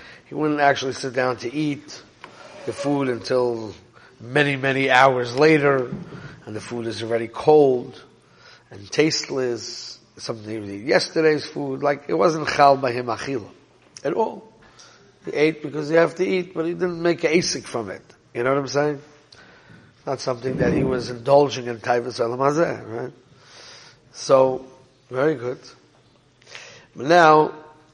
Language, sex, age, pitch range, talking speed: English, male, 50-69, 120-150 Hz, 150 wpm